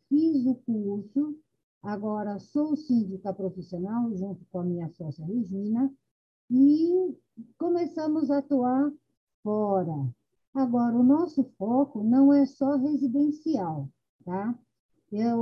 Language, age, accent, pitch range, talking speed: Portuguese, 60-79, Brazilian, 200-280 Hz, 110 wpm